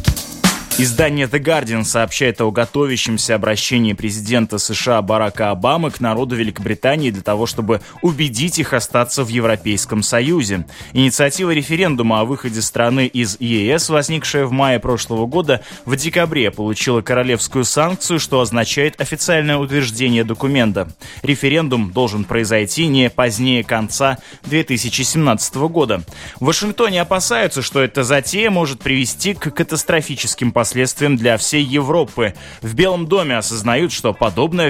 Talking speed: 125 wpm